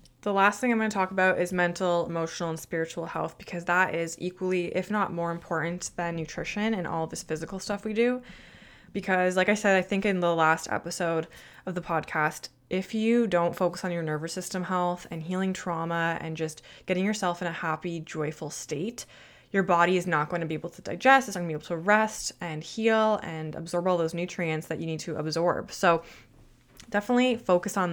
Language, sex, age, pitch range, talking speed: English, female, 20-39, 165-185 Hz, 215 wpm